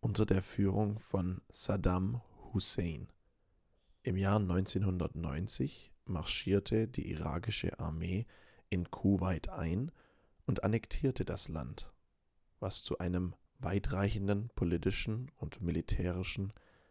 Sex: male